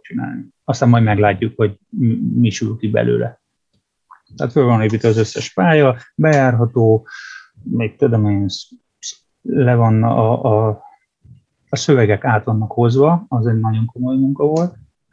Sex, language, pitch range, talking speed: male, Hungarian, 110-135 Hz, 135 wpm